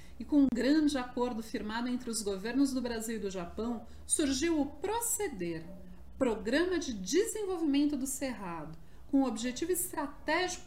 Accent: Brazilian